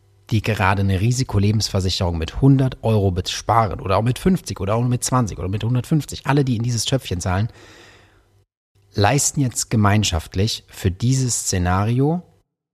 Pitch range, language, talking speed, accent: 100-125 Hz, German, 145 wpm, German